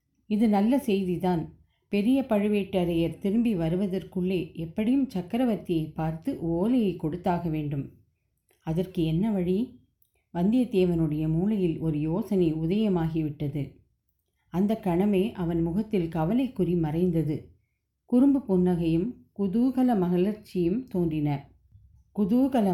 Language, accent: Tamil, native